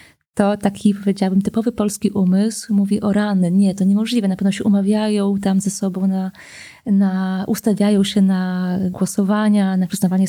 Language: Polish